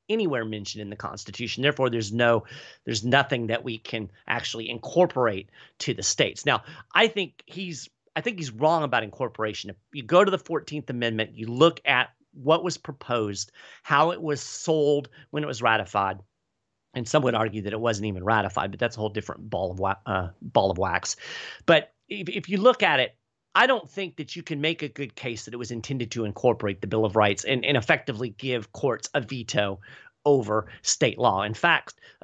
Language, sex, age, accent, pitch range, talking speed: English, male, 40-59, American, 110-160 Hz, 205 wpm